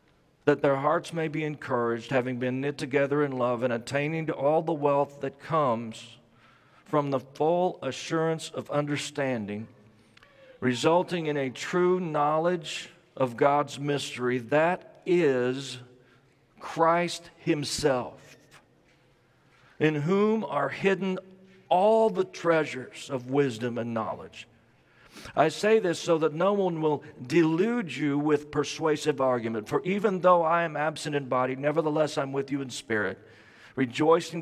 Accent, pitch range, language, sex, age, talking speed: American, 125-160 Hz, English, male, 50-69, 135 wpm